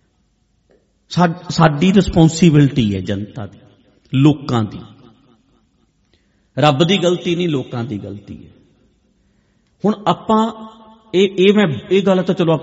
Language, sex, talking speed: English, male, 110 wpm